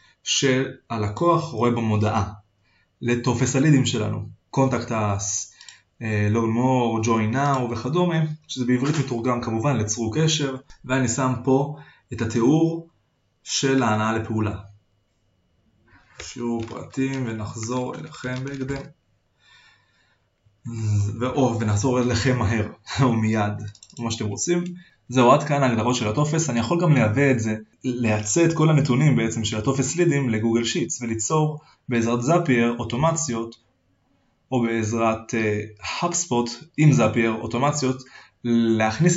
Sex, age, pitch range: male, 20-39, 110-135 Hz